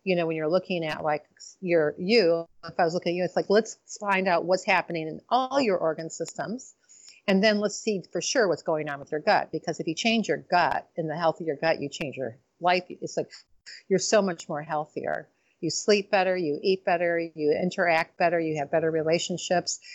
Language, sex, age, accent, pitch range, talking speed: English, female, 50-69, American, 155-195 Hz, 225 wpm